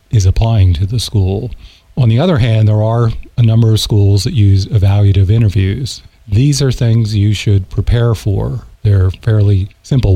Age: 40-59